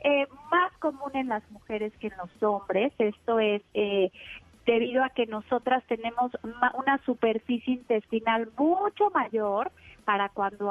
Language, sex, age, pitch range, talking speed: Spanish, female, 30-49, 215-270 Hz, 140 wpm